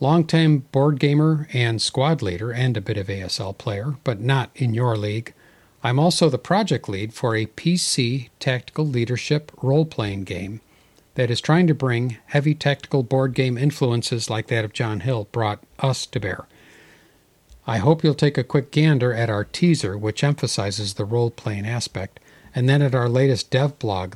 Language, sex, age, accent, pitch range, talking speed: English, male, 50-69, American, 110-140 Hz, 175 wpm